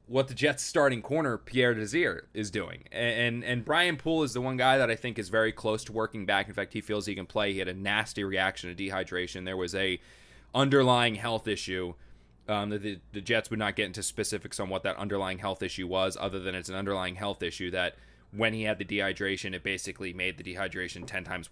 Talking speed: 230 wpm